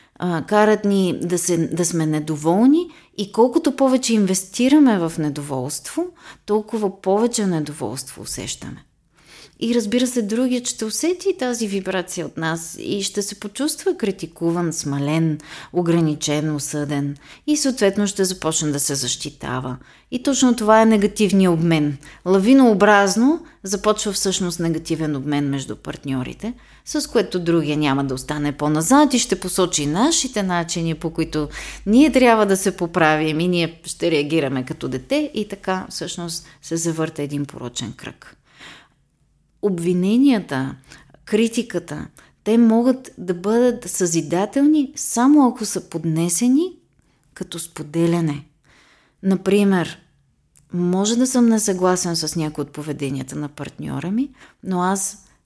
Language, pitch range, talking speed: Bulgarian, 155-215 Hz, 125 wpm